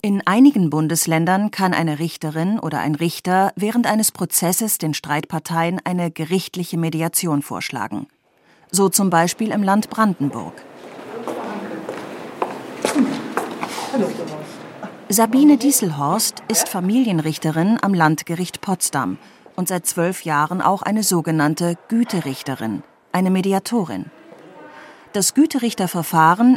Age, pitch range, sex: 40-59, 160-215 Hz, female